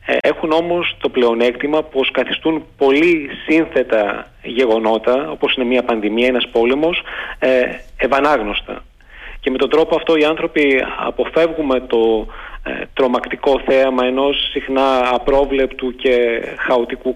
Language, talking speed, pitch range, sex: Greek, 110 wpm, 125-150 Hz, male